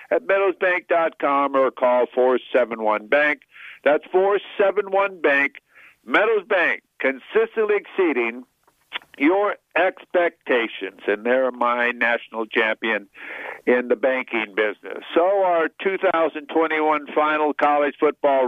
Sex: male